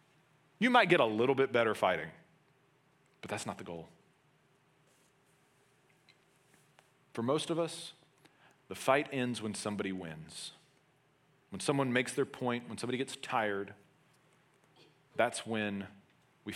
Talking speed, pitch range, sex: 125 wpm, 110-160 Hz, male